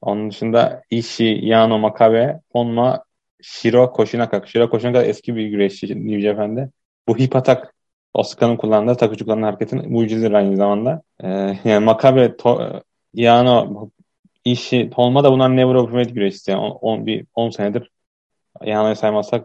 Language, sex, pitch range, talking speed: Turkish, male, 110-125 Hz, 125 wpm